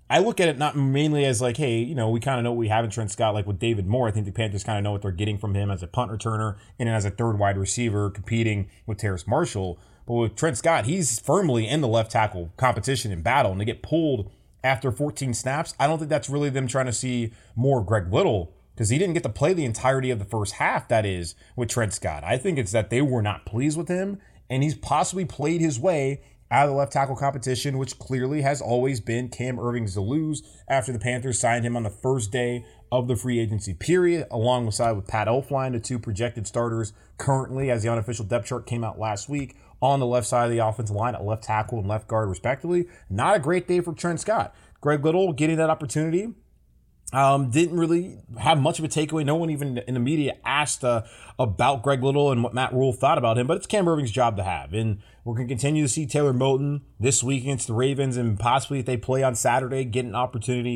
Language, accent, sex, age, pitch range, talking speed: English, American, male, 30-49, 110-140 Hz, 245 wpm